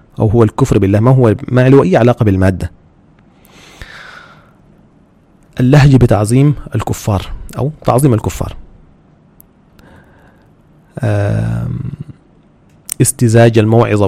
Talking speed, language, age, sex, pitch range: 80 wpm, Arabic, 30-49, male, 95-130 Hz